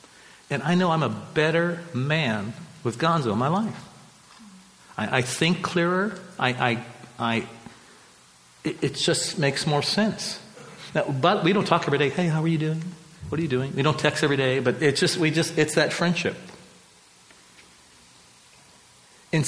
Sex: male